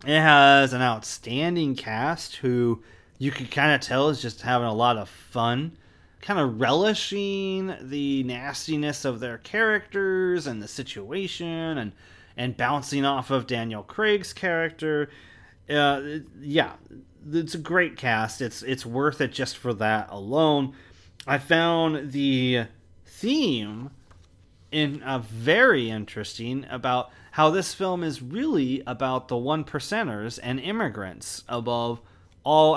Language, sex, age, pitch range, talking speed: English, male, 30-49, 115-155 Hz, 135 wpm